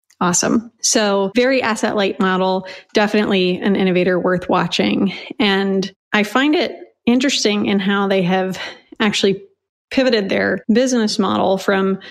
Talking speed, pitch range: 130 wpm, 190-220 Hz